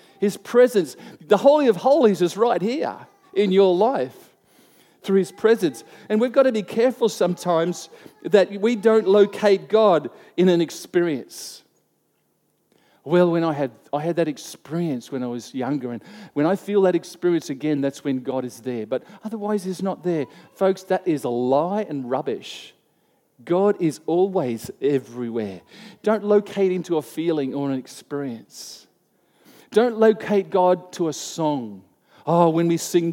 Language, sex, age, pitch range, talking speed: English, male, 50-69, 145-205 Hz, 160 wpm